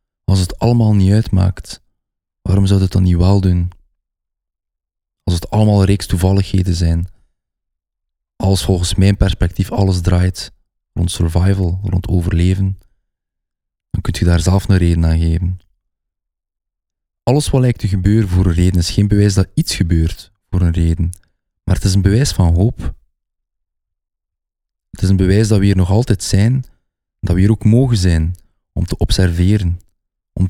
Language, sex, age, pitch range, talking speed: Dutch, male, 20-39, 85-105 Hz, 160 wpm